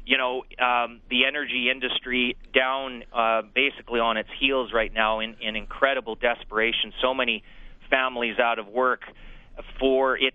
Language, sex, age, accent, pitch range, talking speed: English, male, 30-49, American, 115-135 Hz, 150 wpm